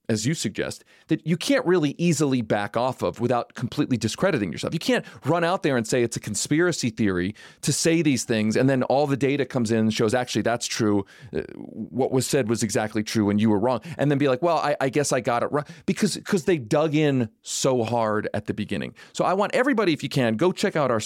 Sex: male